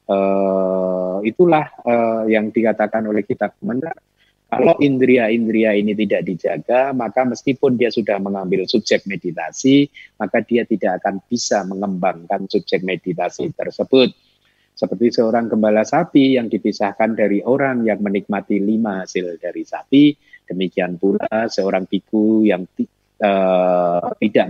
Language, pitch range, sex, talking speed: Indonesian, 95-115 Hz, male, 120 wpm